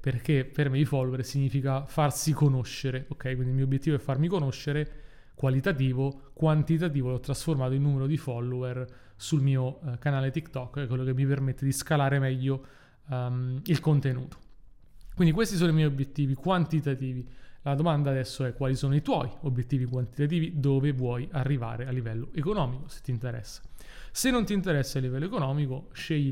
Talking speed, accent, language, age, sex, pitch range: 165 wpm, native, Italian, 30-49, male, 130-150 Hz